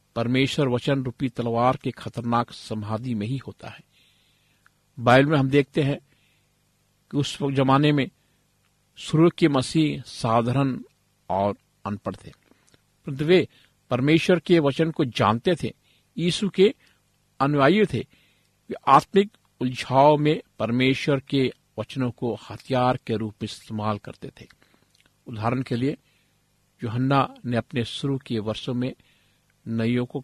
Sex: male